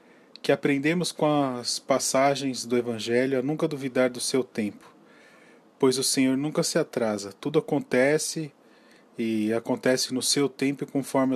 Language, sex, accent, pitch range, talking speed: Portuguese, male, Brazilian, 120-140 Hz, 150 wpm